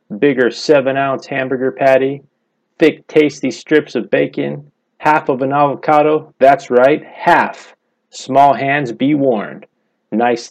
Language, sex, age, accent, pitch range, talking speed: English, male, 30-49, American, 130-155 Hz, 125 wpm